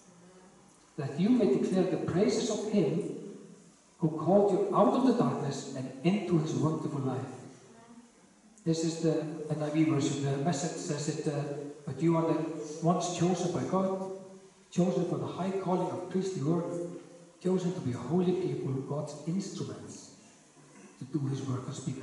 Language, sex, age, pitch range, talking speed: English, male, 50-69, 145-180 Hz, 160 wpm